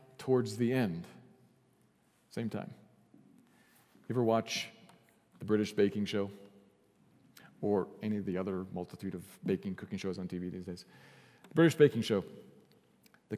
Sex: male